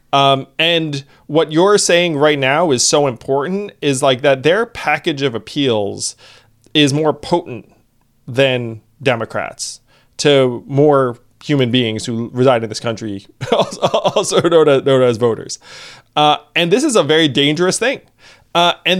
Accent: American